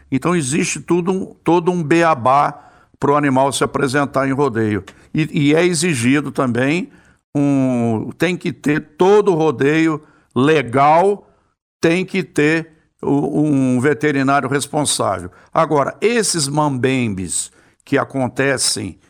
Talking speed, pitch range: 110 wpm, 125-150 Hz